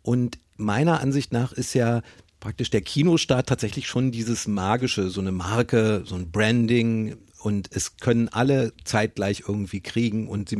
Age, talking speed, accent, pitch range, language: 40-59, 160 wpm, German, 100-130 Hz, German